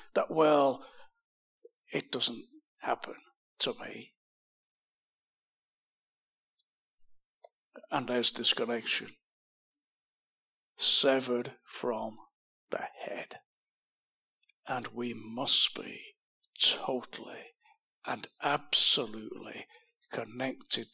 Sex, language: male, English